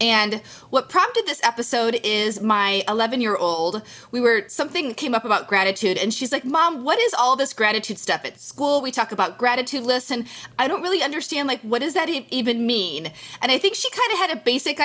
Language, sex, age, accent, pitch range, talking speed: English, female, 20-39, American, 205-260 Hz, 220 wpm